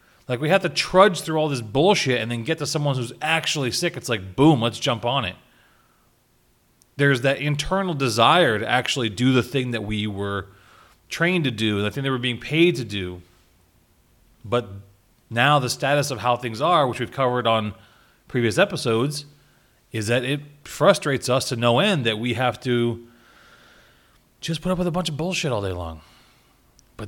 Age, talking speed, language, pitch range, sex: 30-49, 190 wpm, English, 110-150 Hz, male